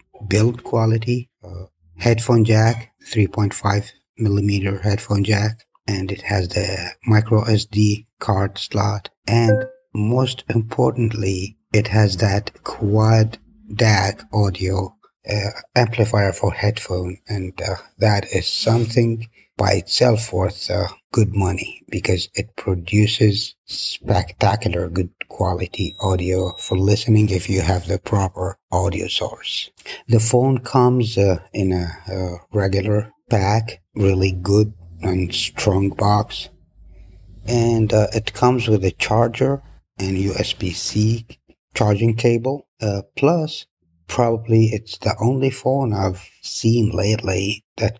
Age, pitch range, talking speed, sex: 60-79, 95-115 Hz, 115 wpm, male